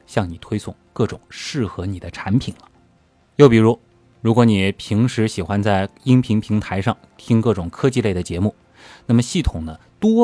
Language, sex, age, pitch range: Chinese, male, 20-39, 95-130 Hz